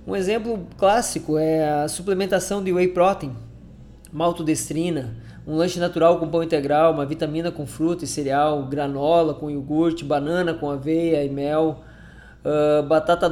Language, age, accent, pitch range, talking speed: Portuguese, 20-39, Brazilian, 150-190 Hz, 145 wpm